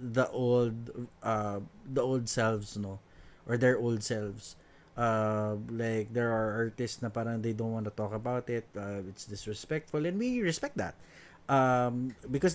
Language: Filipino